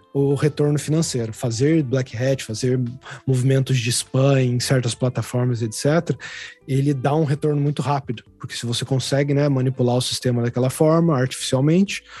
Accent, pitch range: Brazilian, 125-145 Hz